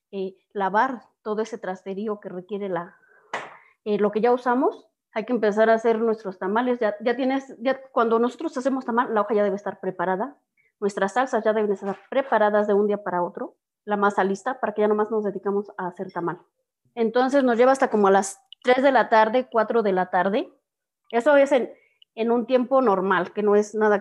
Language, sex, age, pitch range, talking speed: Spanish, female, 20-39, 195-250 Hz, 205 wpm